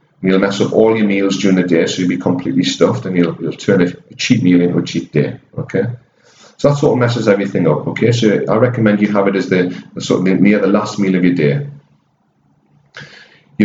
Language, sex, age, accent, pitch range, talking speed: English, male, 40-59, British, 85-110 Hz, 235 wpm